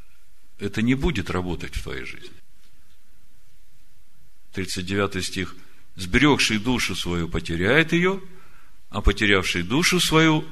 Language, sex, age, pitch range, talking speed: Russian, male, 50-69, 90-110 Hz, 105 wpm